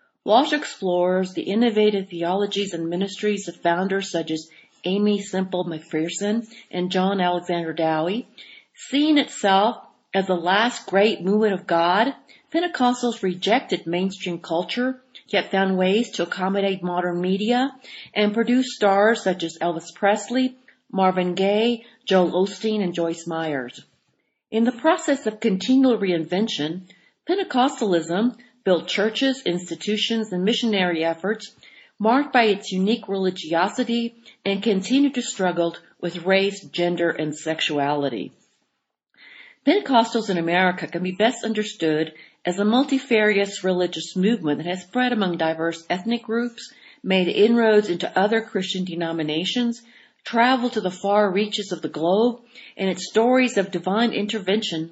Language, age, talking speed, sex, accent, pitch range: English, 50-69, 130 wpm, female, American, 175-230 Hz